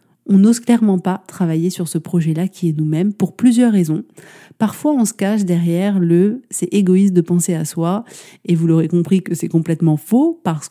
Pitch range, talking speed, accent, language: 175-210 Hz, 205 wpm, French, French